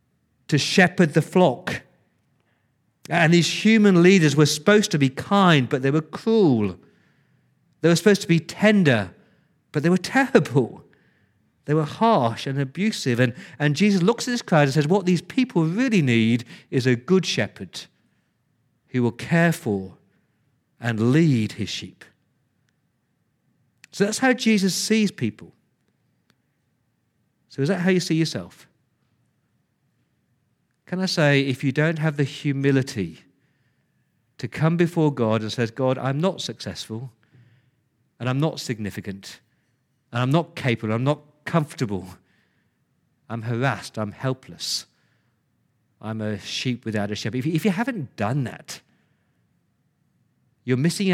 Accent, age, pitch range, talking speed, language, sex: British, 50-69, 120-165 Hz, 140 wpm, English, male